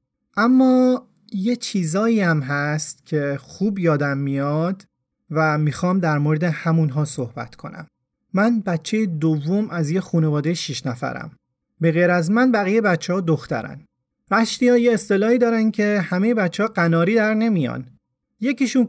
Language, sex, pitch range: Persian, male, 160-220 Hz